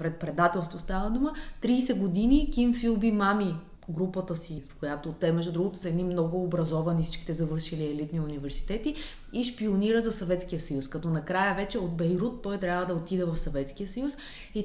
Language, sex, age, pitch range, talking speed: Bulgarian, female, 20-39, 165-210 Hz, 170 wpm